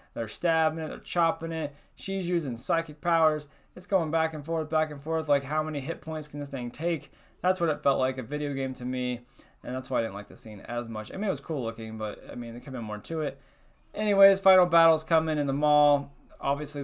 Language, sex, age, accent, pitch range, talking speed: English, male, 20-39, American, 120-155 Hz, 250 wpm